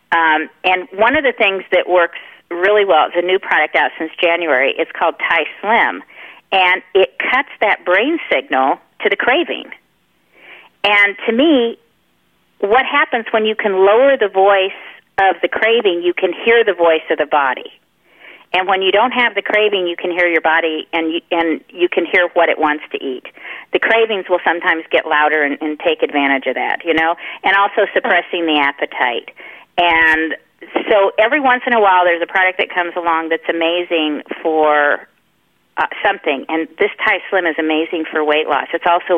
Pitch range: 165-200 Hz